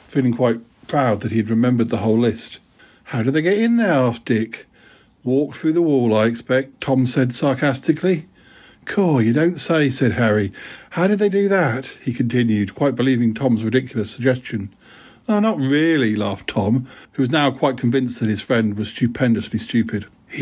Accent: British